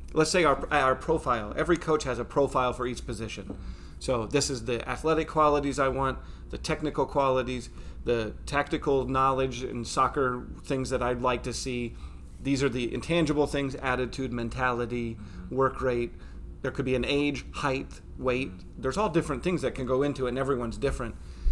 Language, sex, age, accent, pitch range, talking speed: English, male, 30-49, American, 120-140 Hz, 175 wpm